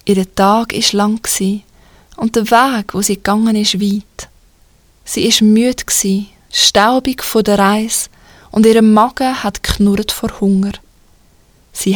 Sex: female